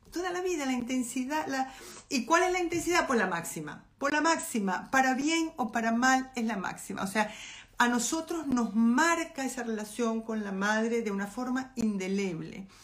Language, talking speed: Spanish, 180 wpm